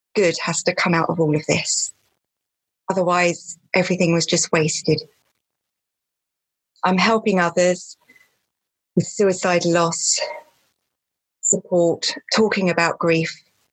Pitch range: 165-185 Hz